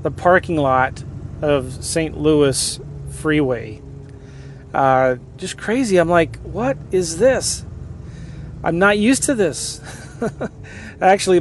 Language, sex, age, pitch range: English, male, 30-49, 135-170 Hz